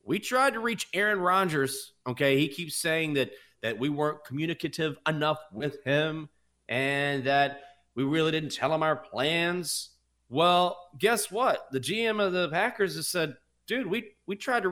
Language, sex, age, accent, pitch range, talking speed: English, male, 30-49, American, 110-165 Hz, 170 wpm